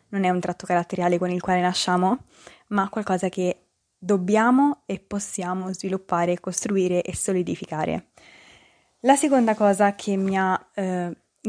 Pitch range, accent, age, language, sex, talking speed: 185-205 Hz, native, 20-39, Italian, female, 135 wpm